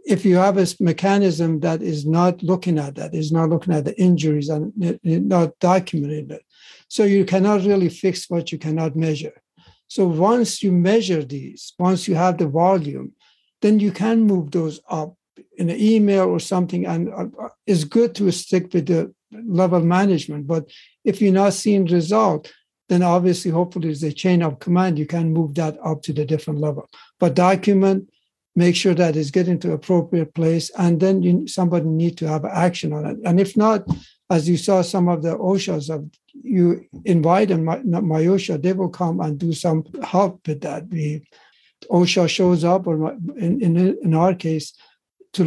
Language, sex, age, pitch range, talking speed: English, male, 60-79, 160-190 Hz, 185 wpm